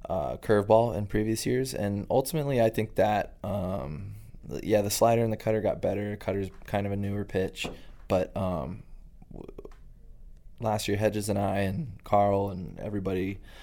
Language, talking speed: English, 160 wpm